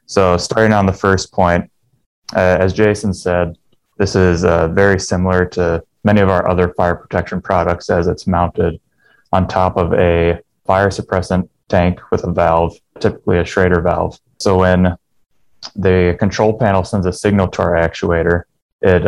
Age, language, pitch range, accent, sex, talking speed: 20-39, English, 85-100 Hz, American, male, 165 wpm